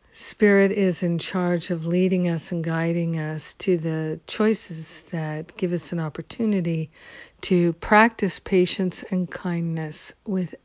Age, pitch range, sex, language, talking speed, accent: 60-79, 160-185 Hz, female, English, 135 wpm, American